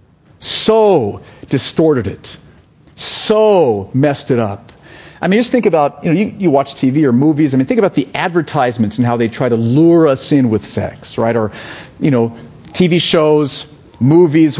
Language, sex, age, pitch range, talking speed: English, male, 40-59, 120-170 Hz, 175 wpm